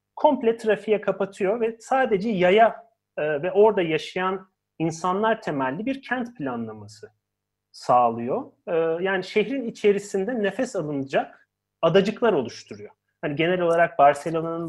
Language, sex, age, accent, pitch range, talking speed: Turkish, male, 40-59, native, 145-210 Hz, 105 wpm